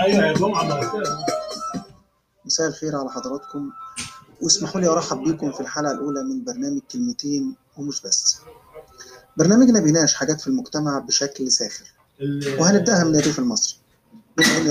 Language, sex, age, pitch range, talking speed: Arabic, male, 30-49, 135-170 Hz, 115 wpm